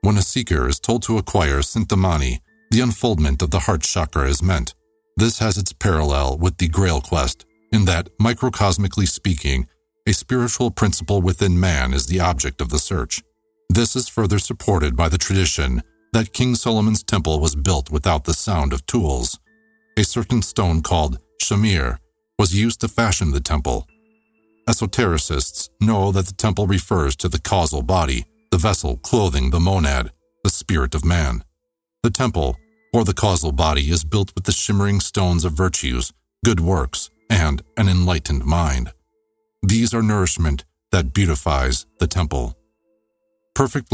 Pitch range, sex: 80-110 Hz, male